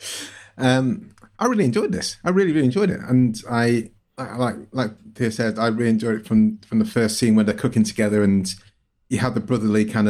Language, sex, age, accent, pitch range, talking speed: English, male, 30-49, British, 100-115 Hz, 215 wpm